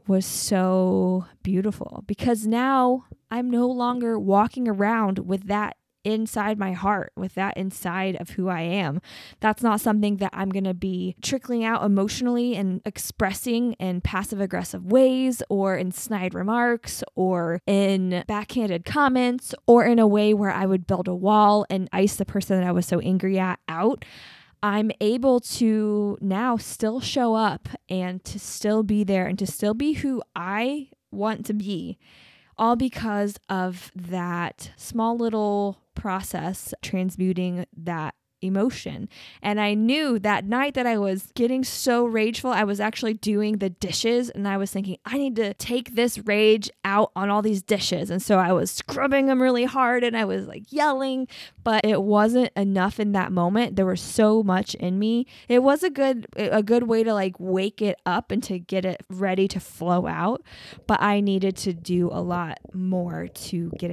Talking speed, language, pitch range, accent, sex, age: 175 wpm, English, 185-230 Hz, American, female, 10-29